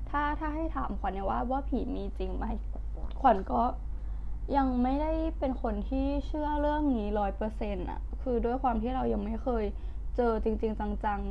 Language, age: Thai, 10-29